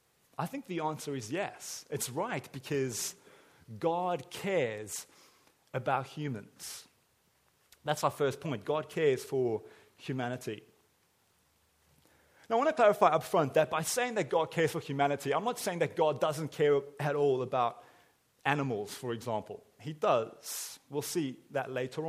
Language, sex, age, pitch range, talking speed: English, male, 30-49, 120-155 Hz, 150 wpm